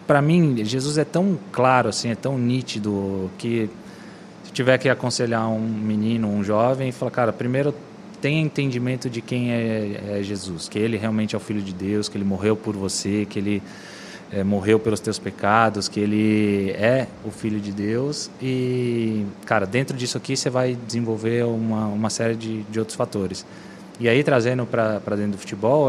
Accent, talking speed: Brazilian, 185 wpm